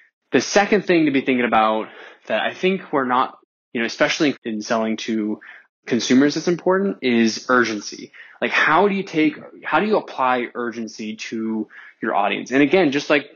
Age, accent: 20-39, American